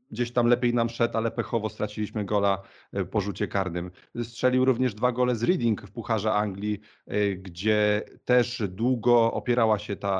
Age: 40-59